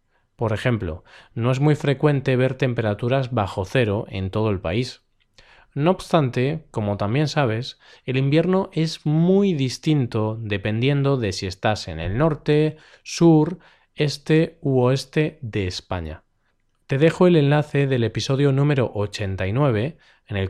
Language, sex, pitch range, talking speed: Spanish, male, 110-145 Hz, 140 wpm